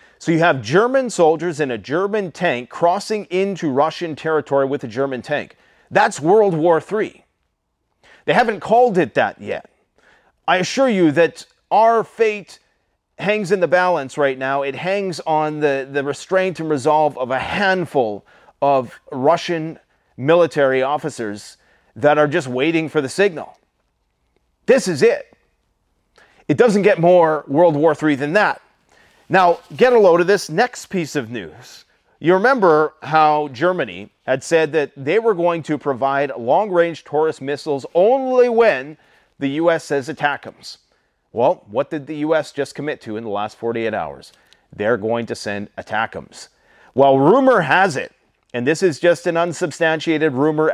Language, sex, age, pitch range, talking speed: English, male, 30-49, 140-180 Hz, 160 wpm